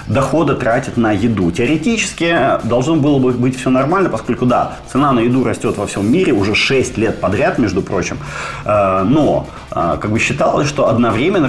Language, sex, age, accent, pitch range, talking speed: Ukrainian, male, 30-49, native, 100-130 Hz, 165 wpm